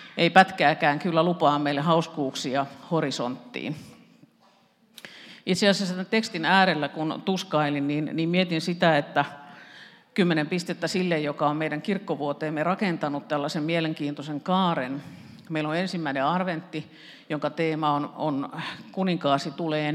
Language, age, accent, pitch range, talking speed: Finnish, 50-69, native, 145-180 Hz, 120 wpm